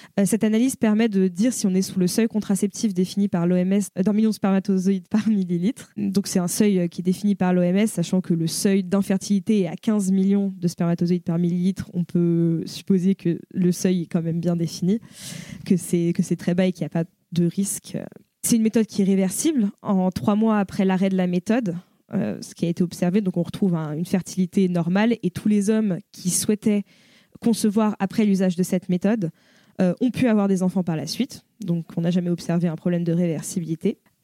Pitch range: 180-210 Hz